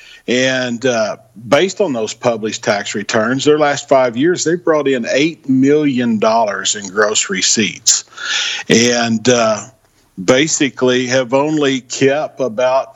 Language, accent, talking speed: English, American, 130 wpm